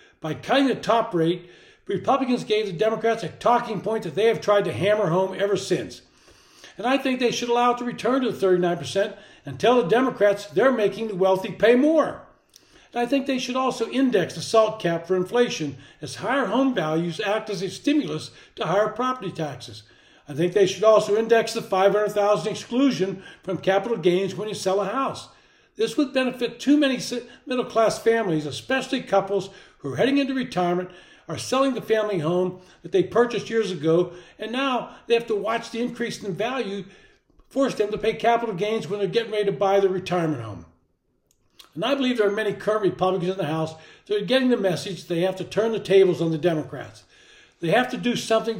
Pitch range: 180-235 Hz